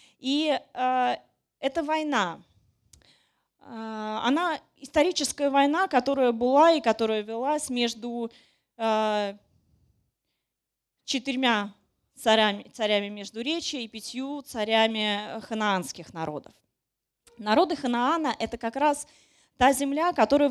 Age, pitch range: 20-39, 220-280 Hz